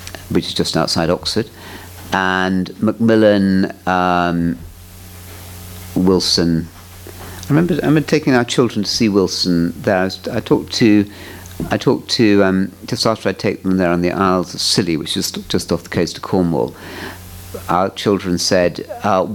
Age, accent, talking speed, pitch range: 50-69, British, 160 wpm, 85-100 Hz